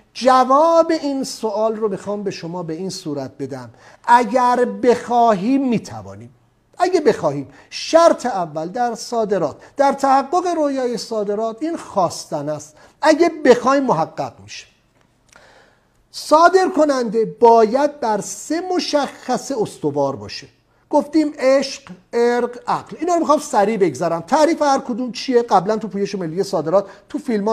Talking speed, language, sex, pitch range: 125 wpm, English, male, 190-275 Hz